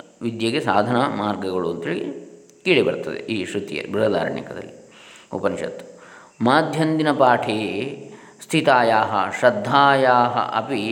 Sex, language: male, Kannada